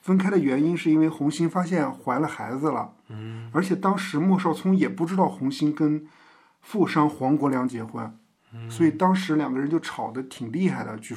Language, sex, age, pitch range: Chinese, male, 50-69, 125-185 Hz